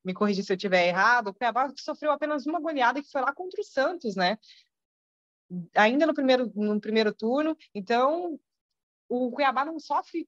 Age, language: 20-39, Portuguese